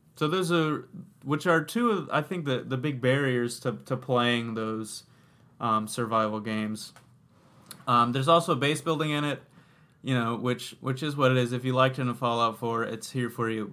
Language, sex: English, male